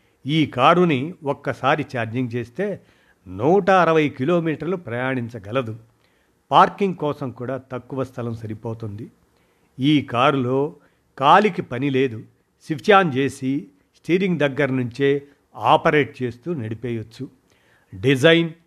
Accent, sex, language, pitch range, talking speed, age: native, male, Telugu, 125-155 Hz, 95 wpm, 50-69